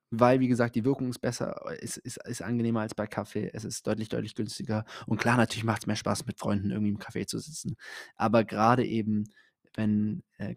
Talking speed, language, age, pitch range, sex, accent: 220 wpm, German, 20-39, 110-130 Hz, male, German